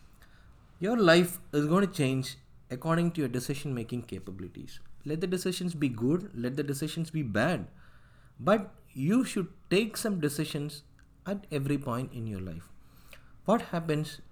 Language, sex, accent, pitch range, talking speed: Tamil, male, native, 120-175 Hz, 150 wpm